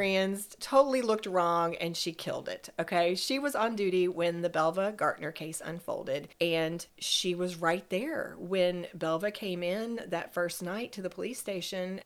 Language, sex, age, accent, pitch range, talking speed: English, female, 40-59, American, 170-210 Hz, 170 wpm